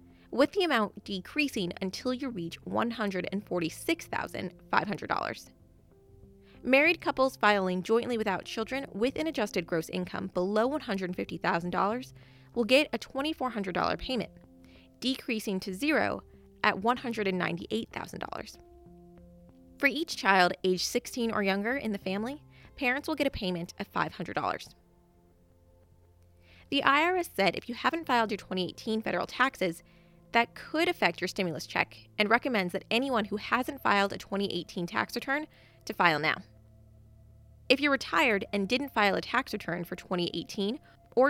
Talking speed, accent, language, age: 130 wpm, American, English, 20-39